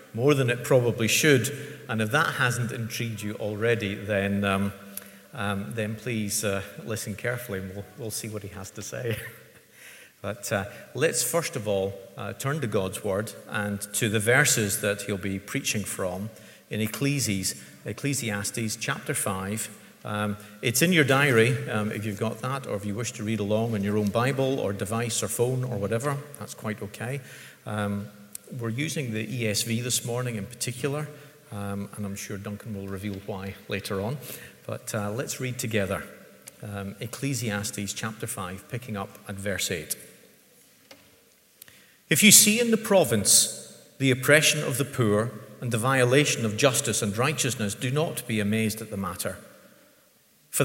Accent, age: British, 40-59